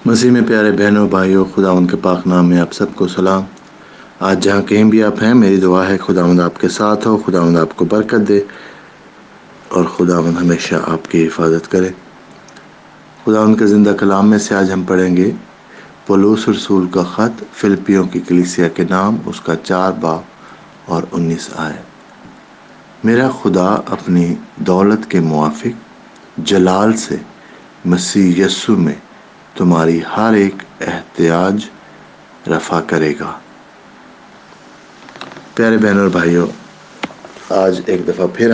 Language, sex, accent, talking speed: English, male, Pakistani, 125 wpm